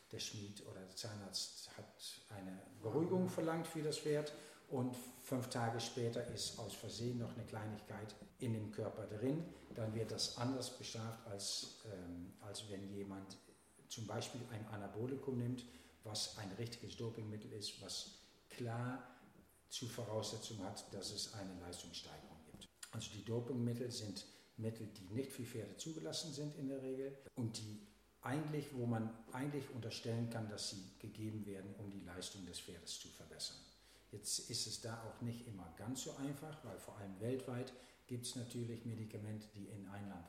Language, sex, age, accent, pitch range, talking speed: German, male, 50-69, German, 100-125 Hz, 165 wpm